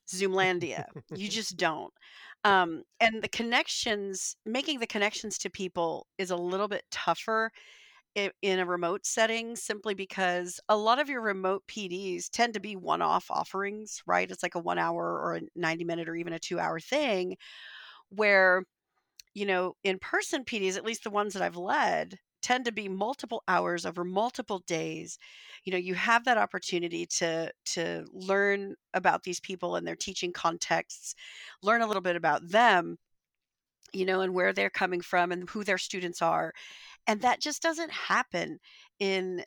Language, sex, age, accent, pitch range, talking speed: English, female, 40-59, American, 180-220 Hz, 165 wpm